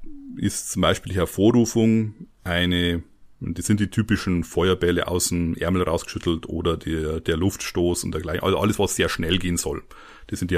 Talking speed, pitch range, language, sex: 175 wpm, 90-110 Hz, German, male